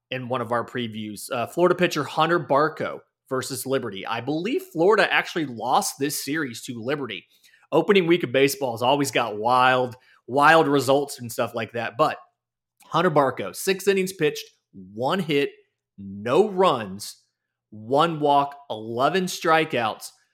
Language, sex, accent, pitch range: English, male, American, 120-155 Hz